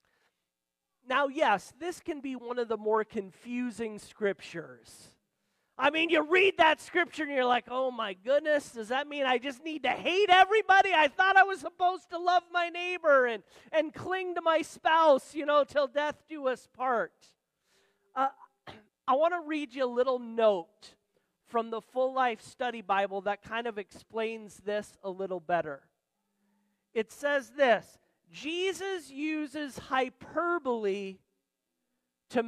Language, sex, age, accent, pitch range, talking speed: English, male, 40-59, American, 220-310 Hz, 155 wpm